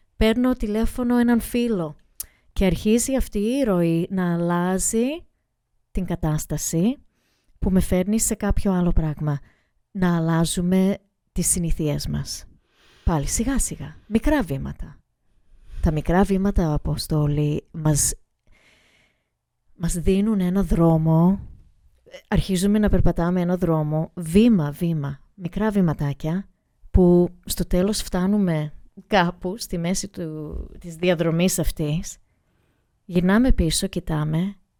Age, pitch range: 30-49, 160-205 Hz